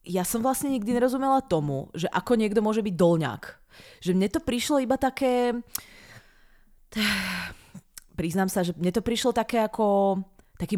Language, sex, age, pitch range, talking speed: Czech, female, 20-39, 160-210 Hz, 150 wpm